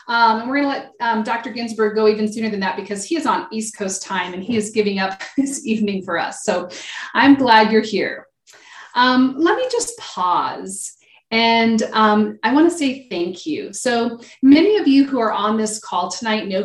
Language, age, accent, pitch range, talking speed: English, 30-49, American, 195-245 Hz, 210 wpm